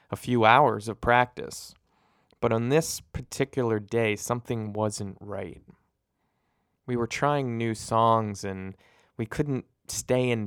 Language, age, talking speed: English, 20-39, 130 wpm